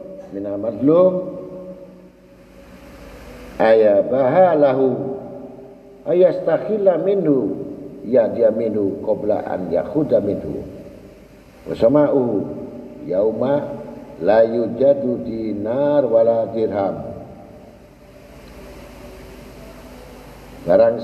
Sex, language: male, Indonesian